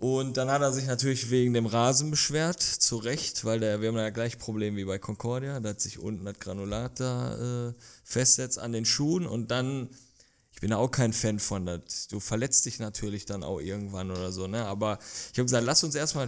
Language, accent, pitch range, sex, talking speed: German, German, 115-145 Hz, male, 225 wpm